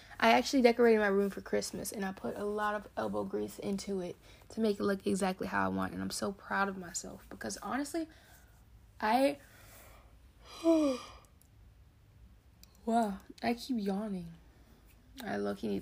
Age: 20-39